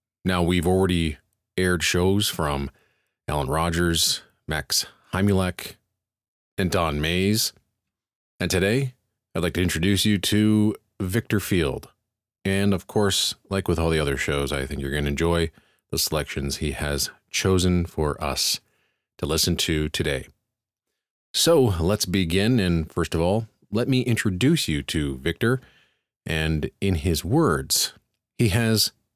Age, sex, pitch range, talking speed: 30-49, male, 80-105 Hz, 140 wpm